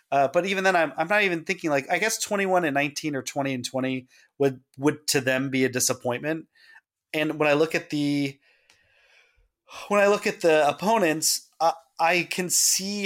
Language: English